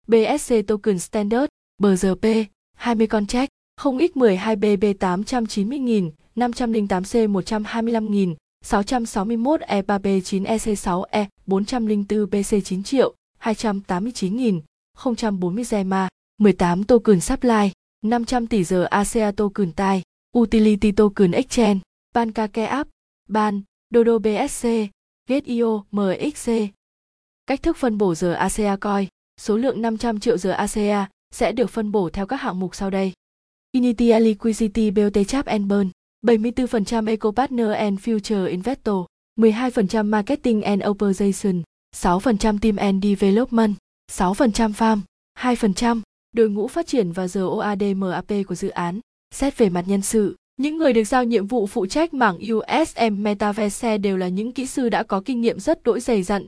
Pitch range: 200-235 Hz